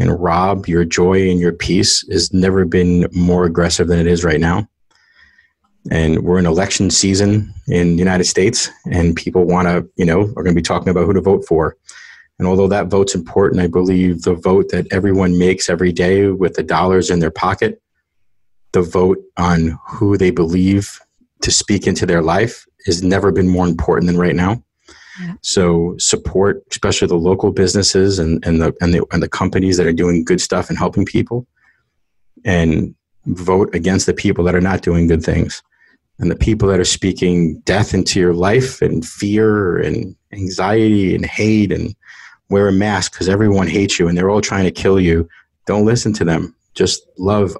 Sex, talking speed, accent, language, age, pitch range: male, 185 wpm, American, English, 30-49, 85-95 Hz